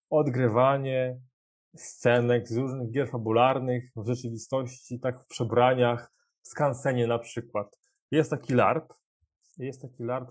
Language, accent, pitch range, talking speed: Polish, native, 120-155 Hz, 120 wpm